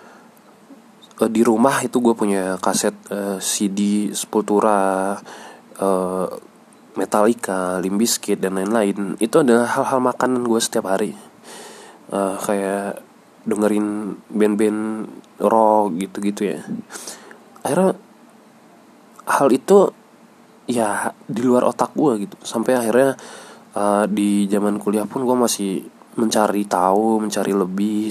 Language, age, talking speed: English, 20-39, 105 wpm